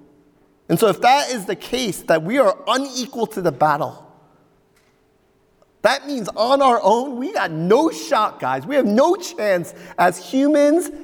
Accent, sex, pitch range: American, male, 165-230 Hz